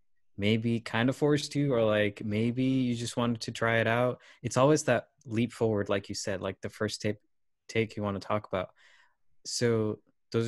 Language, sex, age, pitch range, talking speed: Telugu, male, 20-39, 105-120 Hz, 200 wpm